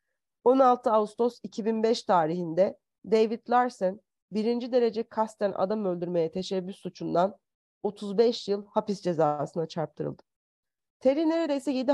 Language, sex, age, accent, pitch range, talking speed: Turkish, female, 40-59, native, 185-235 Hz, 105 wpm